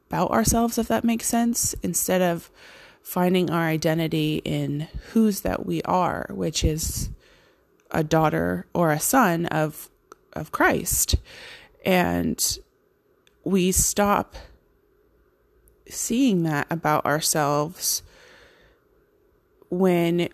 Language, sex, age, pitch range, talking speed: English, female, 20-39, 155-205 Hz, 100 wpm